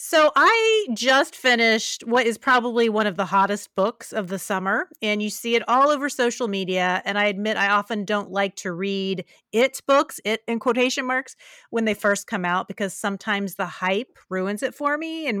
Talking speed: 205 wpm